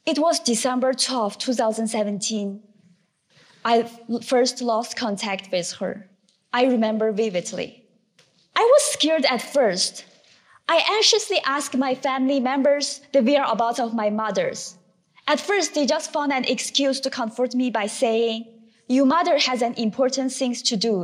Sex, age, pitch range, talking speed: female, 20-39, 225-280 Hz, 145 wpm